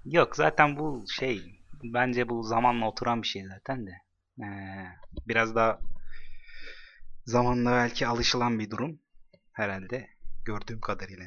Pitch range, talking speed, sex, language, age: 110-130 Hz, 120 wpm, male, Turkish, 30-49